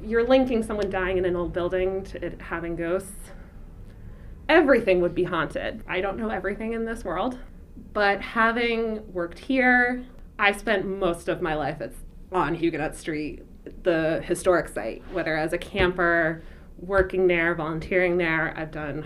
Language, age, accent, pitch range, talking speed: English, 20-39, American, 165-205 Hz, 155 wpm